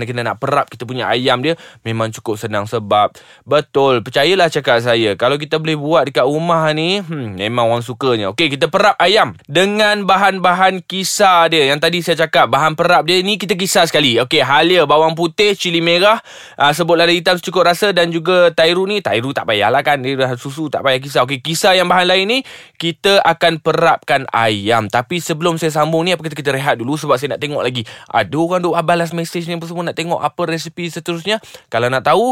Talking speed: 195 wpm